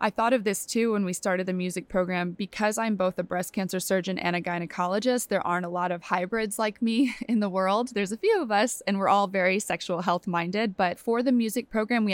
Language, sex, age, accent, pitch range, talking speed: English, female, 20-39, American, 180-210 Hz, 245 wpm